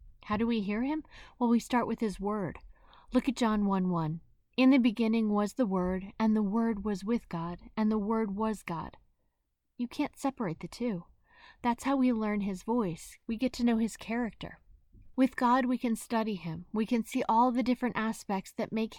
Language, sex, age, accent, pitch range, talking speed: English, female, 30-49, American, 205-250 Hz, 200 wpm